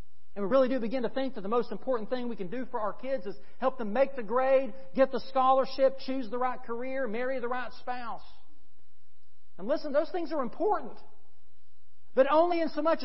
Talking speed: 210 wpm